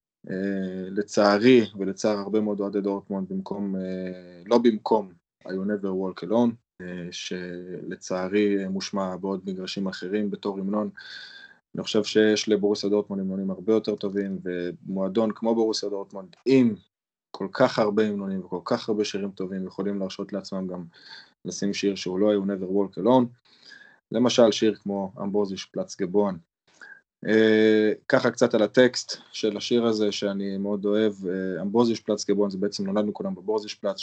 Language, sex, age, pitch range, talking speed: Hebrew, male, 20-39, 95-110 Hz, 145 wpm